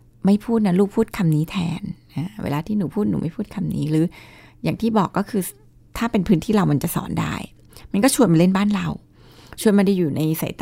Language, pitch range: Thai, 165-215 Hz